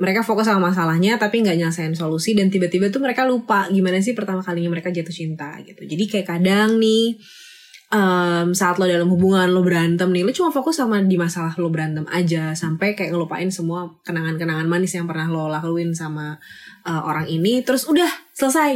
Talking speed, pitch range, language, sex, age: 190 wpm, 165-220 Hz, Indonesian, female, 20-39